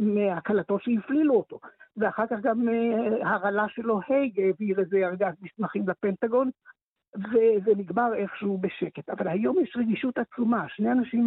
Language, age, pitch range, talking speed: Hebrew, 60-79, 200-235 Hz, 135 wpm